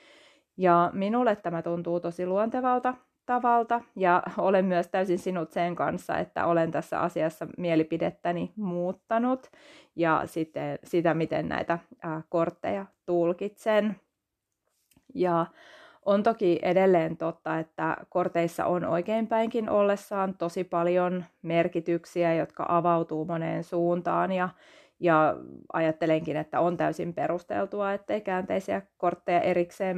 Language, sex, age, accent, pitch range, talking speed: Finnish, female, 30-49, native, 170-215 Hz, 105 wpm